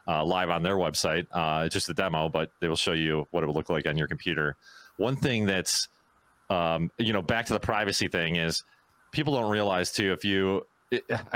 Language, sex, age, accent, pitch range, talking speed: English, male, 30-49, American, 85-110 Hz, 220 wpm